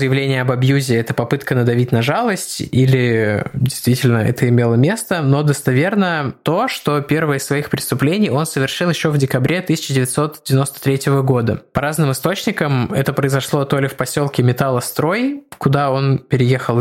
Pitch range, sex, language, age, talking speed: 125-150 Hz, male, Russian, 20-39, 145 wpm